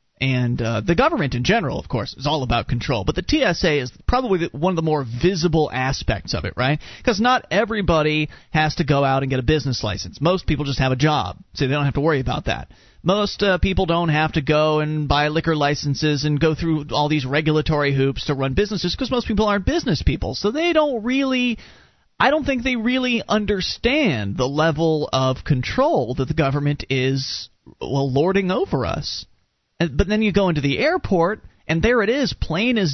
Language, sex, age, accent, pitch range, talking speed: English, male, 30-49, American, 145-215 Hz, 210 wpm